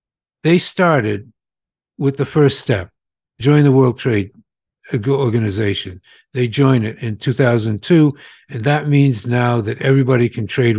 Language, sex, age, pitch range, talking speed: English, male, 60-79, 115-145 Hz, 135 wpm